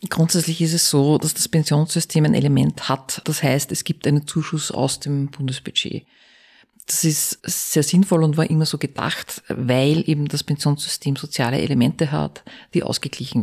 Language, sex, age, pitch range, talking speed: German, female, 40-59, 140-155 Hz, 165 wpm